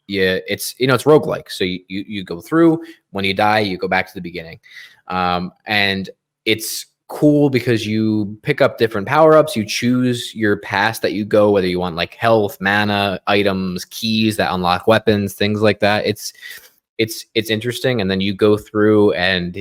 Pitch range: 95-115 Hz